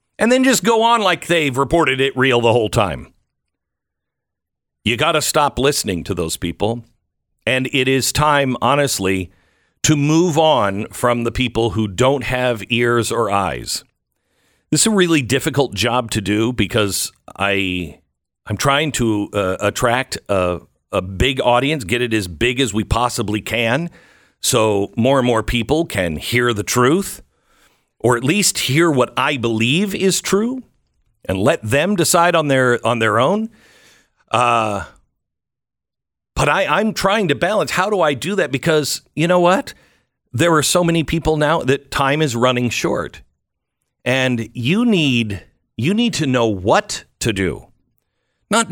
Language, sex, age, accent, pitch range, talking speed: English, male, 50-69, American, 105-155 Hz, 160 wpm